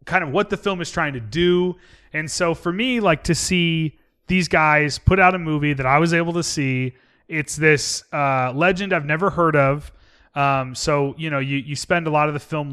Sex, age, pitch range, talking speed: male, 30-49, 140-180 Hz, 225 wpm